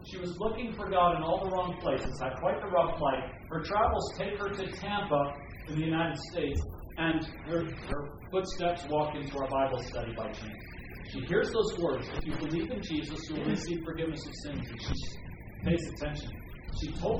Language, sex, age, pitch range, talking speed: English, male, 40-59, 120-165 Hz, 200 wpm